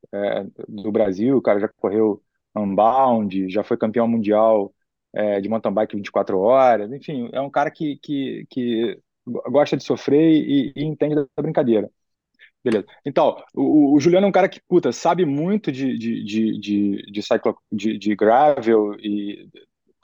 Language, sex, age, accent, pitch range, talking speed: Portuguese, male, 20-39, Brazilian, 115-160 Hz, 170 wpm